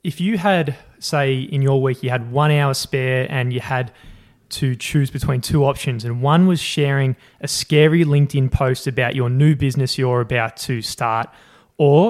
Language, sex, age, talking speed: English, male, 20-39, 185 wpm